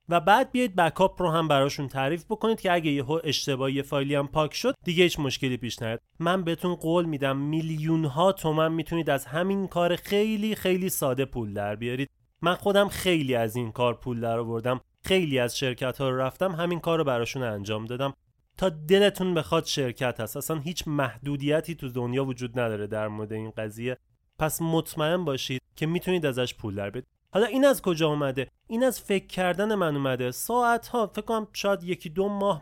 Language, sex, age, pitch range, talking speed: Persian, male, 30-49, 130-185 Hz, 190 wpm